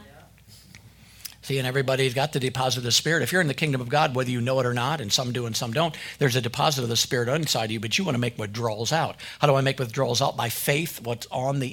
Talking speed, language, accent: 280 wpm, English, American